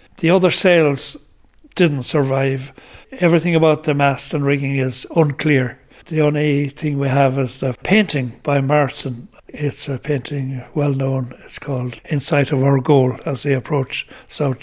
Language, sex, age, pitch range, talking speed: English, male, 60-79, 135-160 Hz, 155 wpm